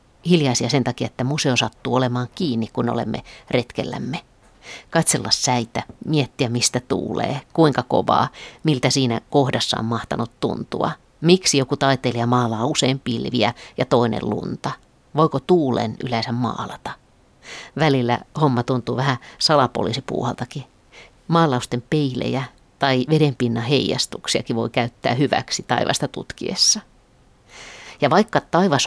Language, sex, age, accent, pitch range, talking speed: Finnish, female, 50-69, native, 120-150 Hz, 115 wpm